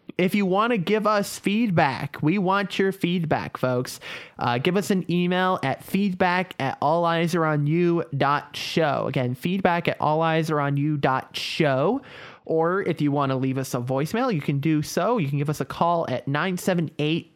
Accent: American